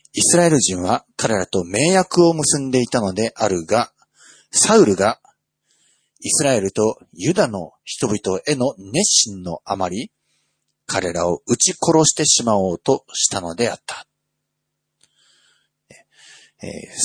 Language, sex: Japanese, male